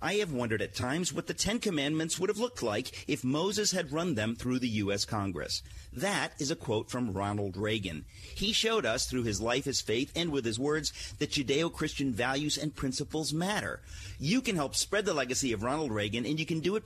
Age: 40-59